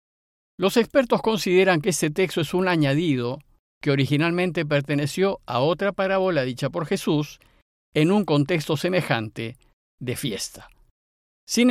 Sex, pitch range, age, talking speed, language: male, 140-190 Hz, 50-69, 130 wpm, Spanish